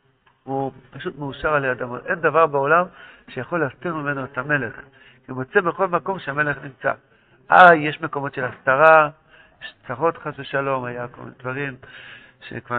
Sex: male